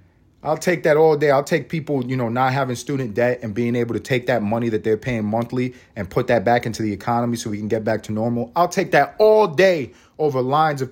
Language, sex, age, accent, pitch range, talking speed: English, male, 30-49, American, 110-140 Hz, 260 wpm